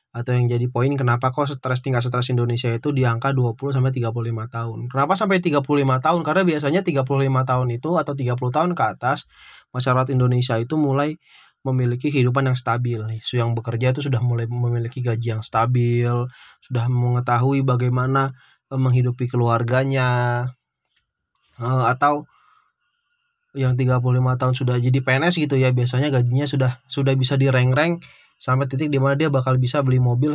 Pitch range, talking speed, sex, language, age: 125-140 Hz, 145 wpm, male, Indonesian, 20-39